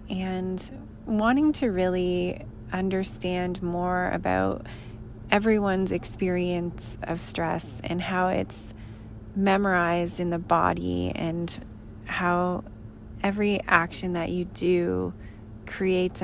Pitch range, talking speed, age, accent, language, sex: 110-180 Hz, 95 wpm, 20-39, American, English, female